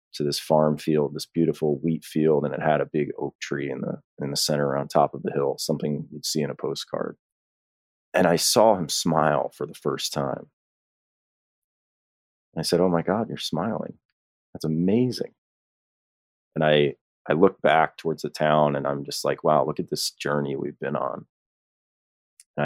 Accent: American